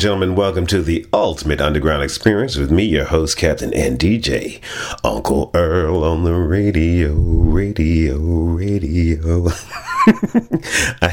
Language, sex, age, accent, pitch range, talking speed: English, male, 40-59, American, 75-100 Hz, 120 wpm